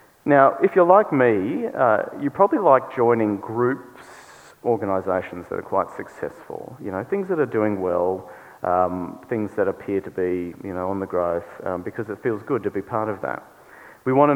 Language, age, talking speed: English, 40-59, 190 wpm